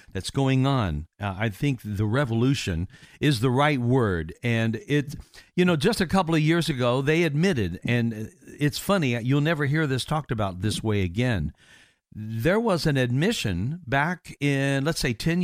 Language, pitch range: English, 115-155 Hz